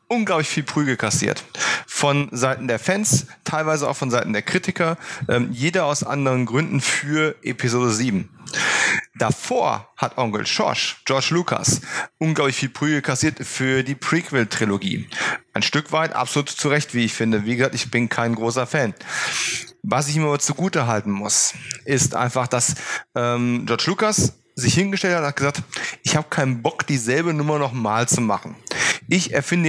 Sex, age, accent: male, 30-49, German